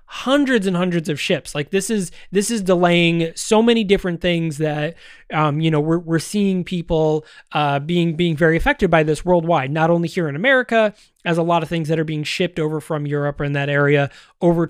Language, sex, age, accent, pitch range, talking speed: English, male, 20-39, American, 160-200 Hz, 215 wpm